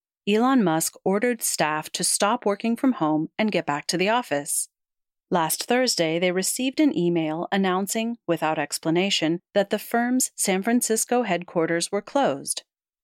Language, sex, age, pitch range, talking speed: English, female, 40-59, 170-220 Hz, 145 wpm